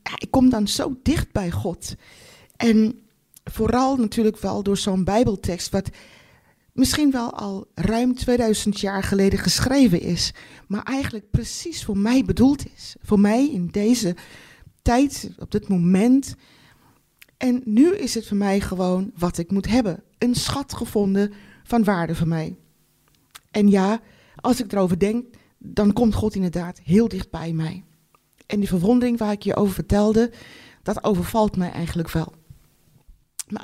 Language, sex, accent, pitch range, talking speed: Dutch, female, Dutch, 185-235 Hz, 150 wpm